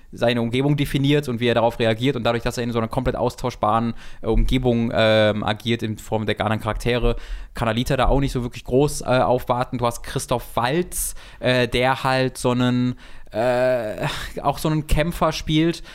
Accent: German